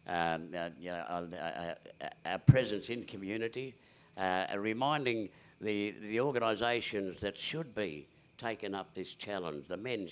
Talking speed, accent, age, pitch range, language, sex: 155 wpm, British, 60-79, 90-115 Hz, English, male